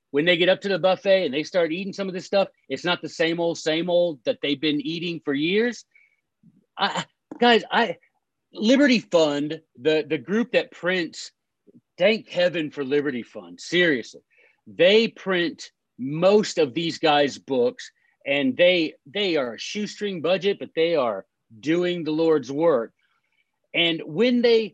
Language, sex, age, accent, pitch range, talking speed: English, male, 40-59, American, 160-210 Hz, 165 wpm